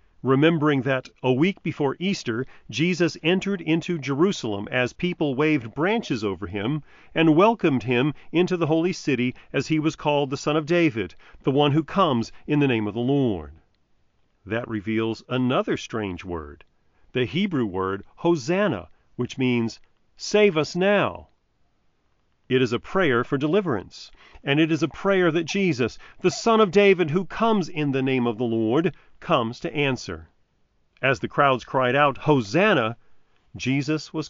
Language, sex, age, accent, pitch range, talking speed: English, male, 40-59, American, 110-160 Hz, 160 wpm